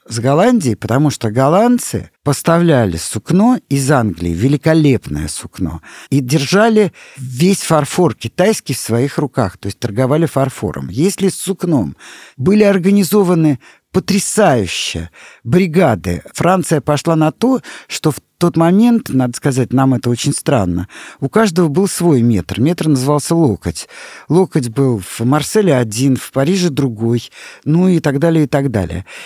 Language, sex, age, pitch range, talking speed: Russian, male, 50-69, 120-175 Hz, 135 wpm